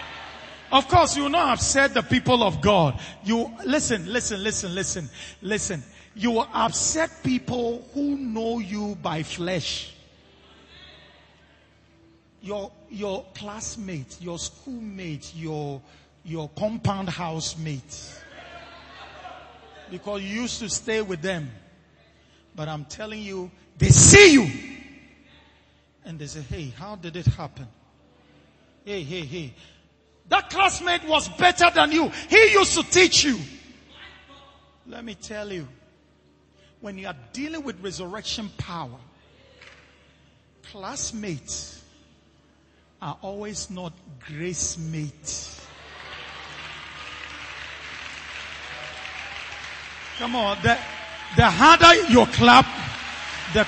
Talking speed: 105 wpm